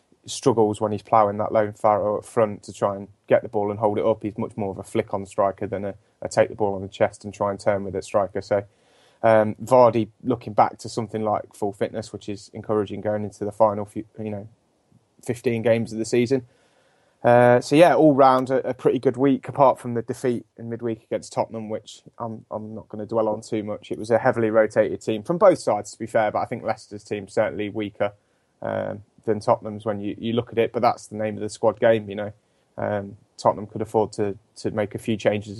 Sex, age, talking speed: male, 20-39, 245 wpm